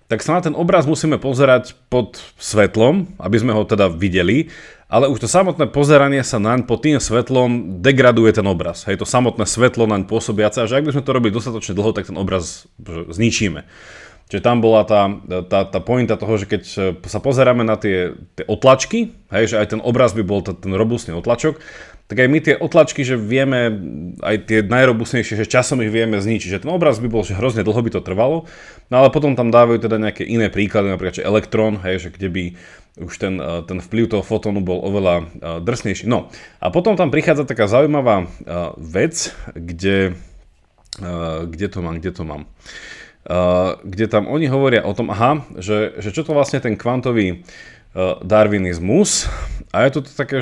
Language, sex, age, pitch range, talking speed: Slovak, male, 30-49, 95-125 Hz, 185 wpm